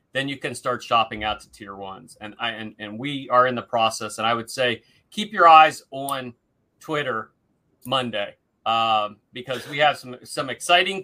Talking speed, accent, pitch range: 195 wpm, American, 115-150 Hz